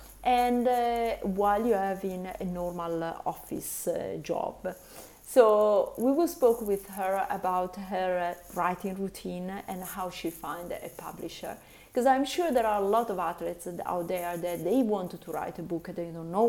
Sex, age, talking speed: female, 30-49, 180 wpm